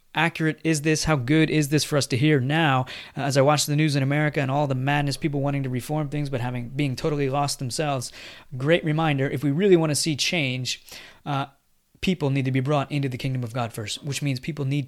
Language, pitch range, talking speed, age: English, 135-160 Hz, 240 wpm, 30-49